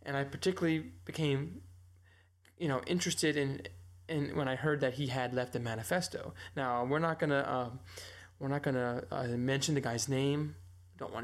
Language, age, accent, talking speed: English, 20-39, American, 175 wpm